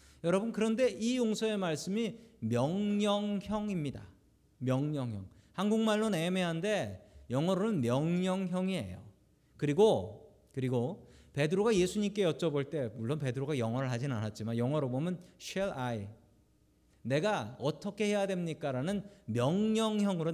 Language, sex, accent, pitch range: Korean, male, native, 125-200 Hz